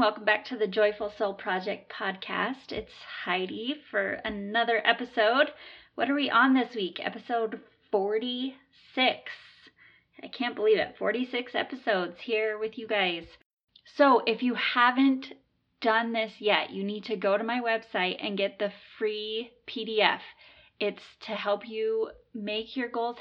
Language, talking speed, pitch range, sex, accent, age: English, 145 wpm, 195-230 Hz, female, American, 20-39